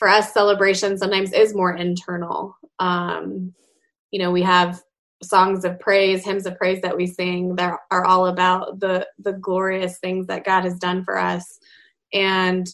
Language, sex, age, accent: English, female, 20-39, American